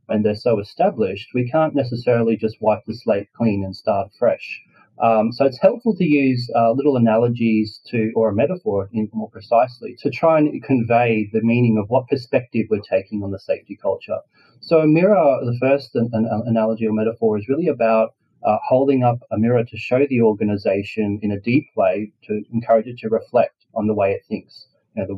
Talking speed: 190 wpm